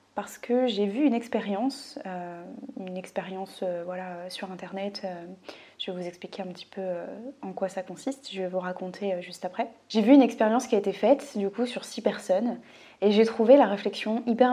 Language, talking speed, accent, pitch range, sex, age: French, 215 wpm, French, 190-245 Hz, female, 20-39